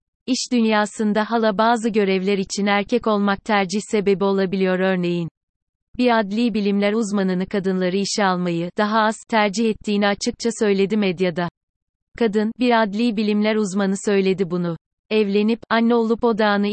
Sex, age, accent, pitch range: female, 30-49, native, 190-220 Hz